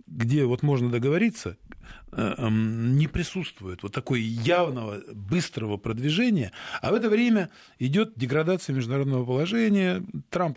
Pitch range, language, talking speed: 120-185 Hz, Russian, 115 wpm